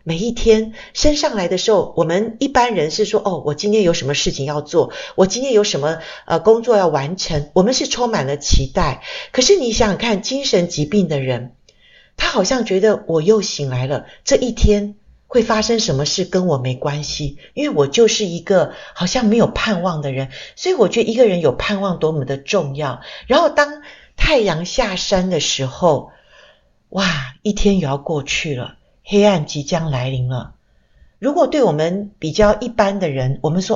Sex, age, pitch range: female, 50-69, 150-225 Hz